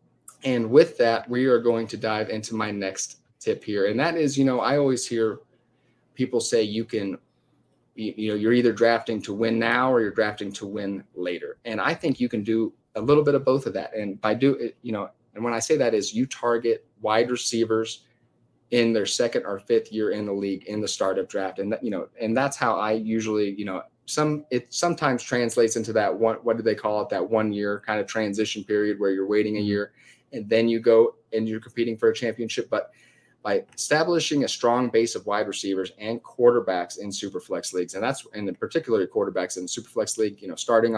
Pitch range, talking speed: 100-120 Hz, 225 wpm